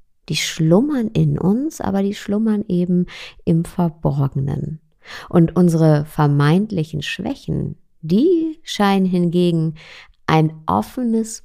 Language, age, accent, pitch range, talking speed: German, 50-69, German, 160-210 Hz, 100 wpm